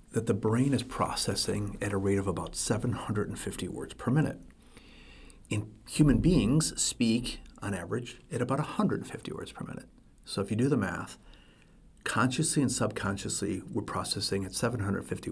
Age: 40-59